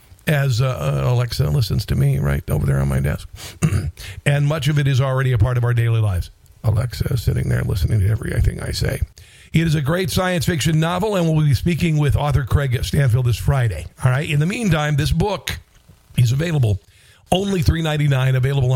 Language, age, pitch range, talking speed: English, 50-69, 105-145 Hz, 200 wpm